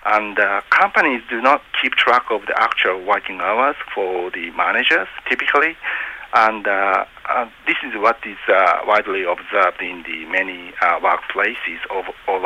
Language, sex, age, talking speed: English, male, 50-69, 155 wpm